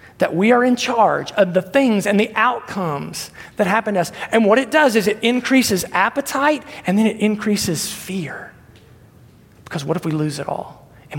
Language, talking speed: English, 195 wpm